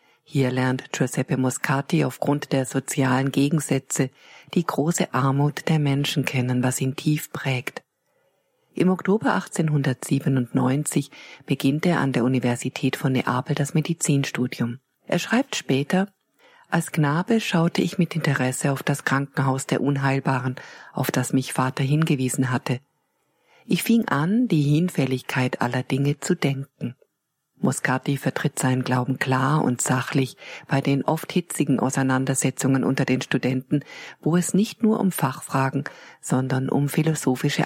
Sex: female